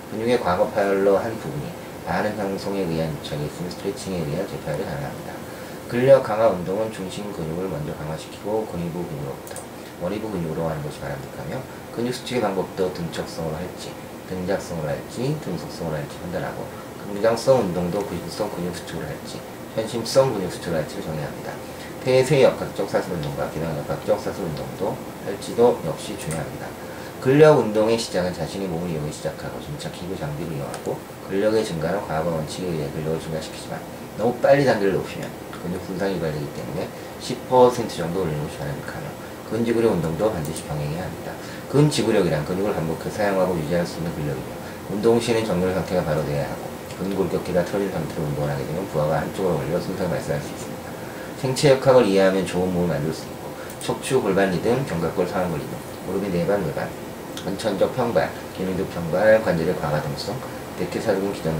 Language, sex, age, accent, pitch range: Korean, male, 40-59, native, 85-115 Hz